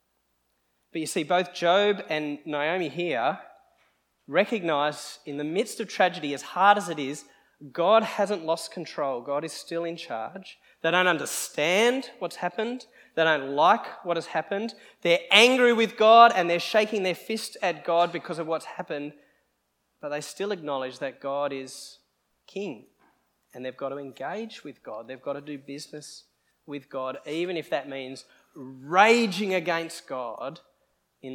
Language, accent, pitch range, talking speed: English, Australian, 140-185 Hz, 160 wpm